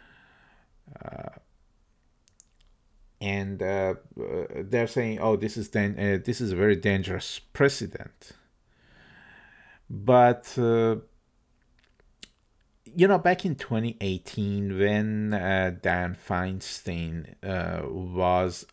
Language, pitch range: English, 100-130 Hz